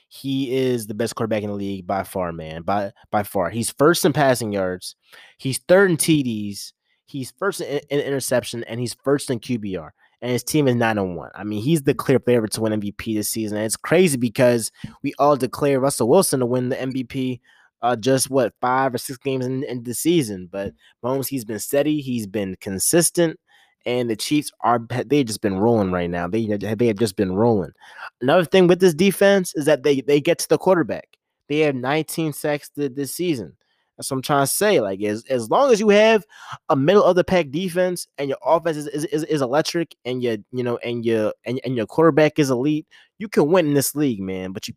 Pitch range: 110-150 Hz